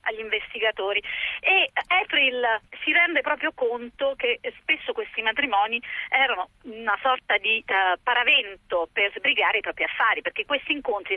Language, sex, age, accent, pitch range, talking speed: Italian, female, 40-59, native, 205-335 Hz, 140 wpm